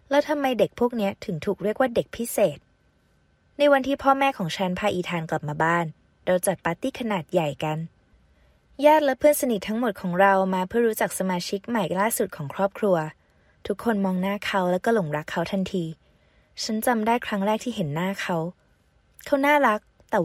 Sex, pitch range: female, 175-230 Hz